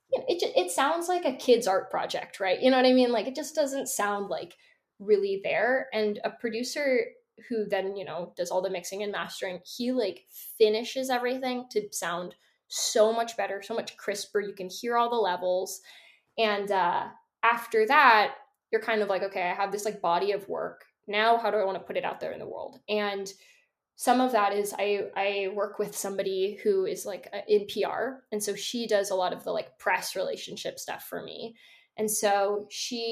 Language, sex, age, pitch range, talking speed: English, female, 10-29, 200-250 Hz, 210 wpm